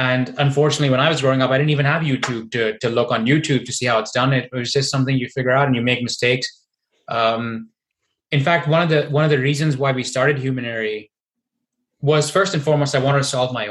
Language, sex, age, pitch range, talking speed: English, male, 20-39, 125-150 Hz, 245 wpm